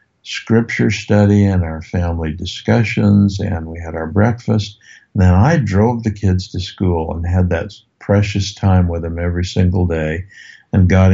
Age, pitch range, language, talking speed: 60-79, 90-110 Hz, English, 165 wpm